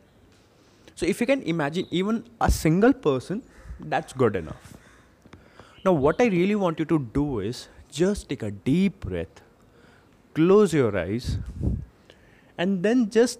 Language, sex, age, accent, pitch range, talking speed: English, male, 20-39, Indian, 110-160 Hz, 145 wpm